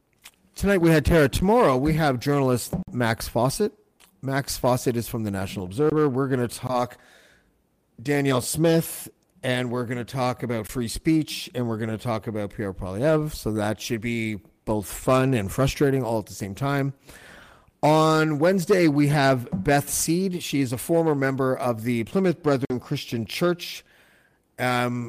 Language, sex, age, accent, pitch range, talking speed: English, male, 40-59, American, 120-155 Hz, 165 wpm